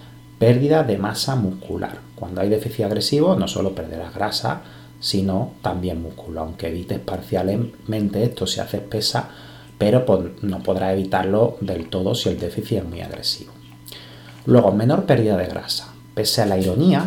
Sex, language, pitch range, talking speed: male, Spanish, 85-110 Hz, 150 wpm